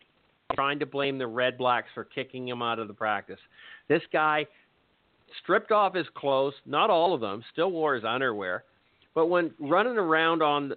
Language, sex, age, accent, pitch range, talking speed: English, male, 50-69, American, 125-155 Hz, 180 wpm